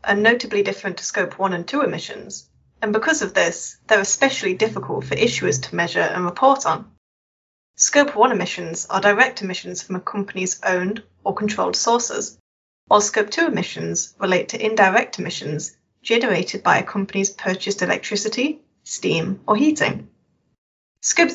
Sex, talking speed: female, 150 wpm